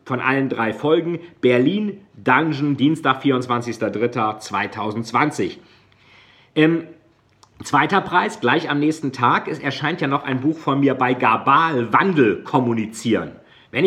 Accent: German